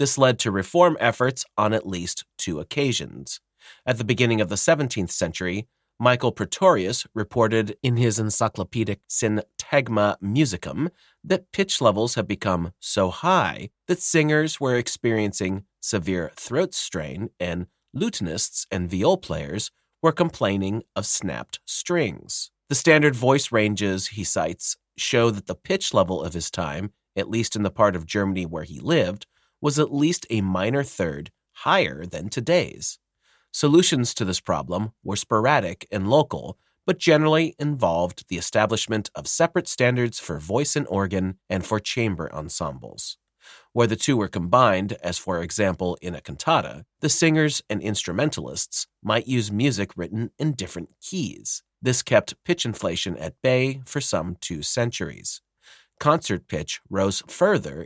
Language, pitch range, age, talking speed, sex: English, 95-135 Hz, 30-49, 145 wpm, male